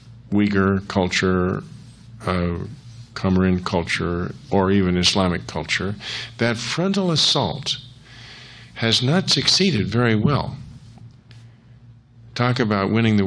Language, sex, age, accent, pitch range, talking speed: English, male, 50-69, American, 100-125 Hz, 95 wpm